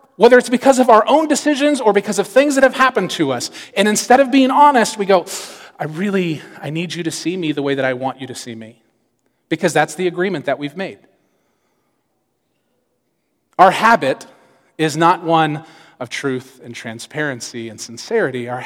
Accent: American